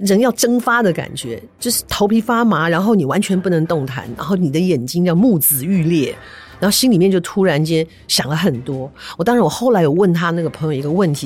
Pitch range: 155-210 Hz